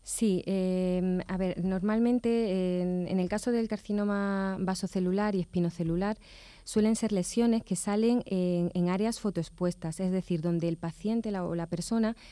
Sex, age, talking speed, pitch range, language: female, 20-39, 155 wpm, 175-200 Hz, Spanish